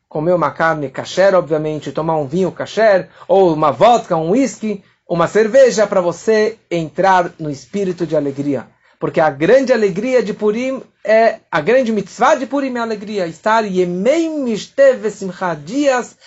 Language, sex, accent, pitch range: Portuguese, male, Brazilian, 170-240 Hz